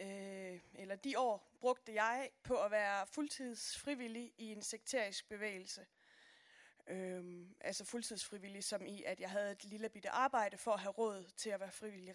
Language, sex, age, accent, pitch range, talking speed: Danish, female, 20-39, native, 210-270 Hz, 160 wpm